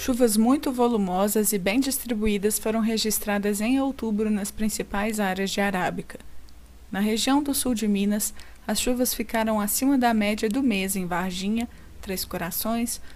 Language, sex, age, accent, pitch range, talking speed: Portuguese, female, 20-39, Brazilian, 200-240 Hz, 150 wpm